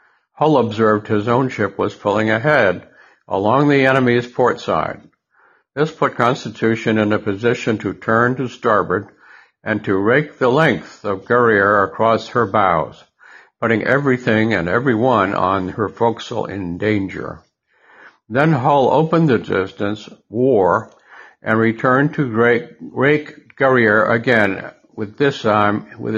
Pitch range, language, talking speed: 105-130 Hz, English, 135 wpm